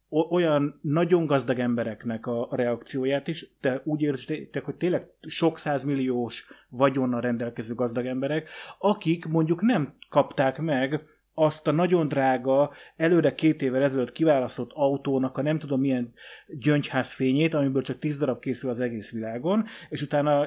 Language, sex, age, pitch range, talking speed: Hungarian, male, 30-49, 130-160 Hz, 145 wpm